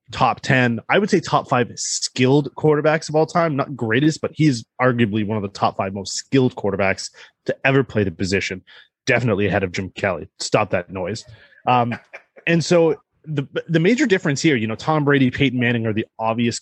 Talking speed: 200 wpm